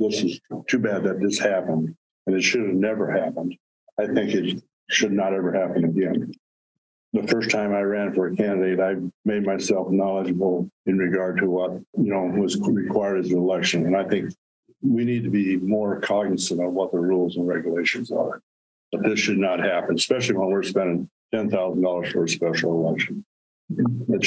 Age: 60-79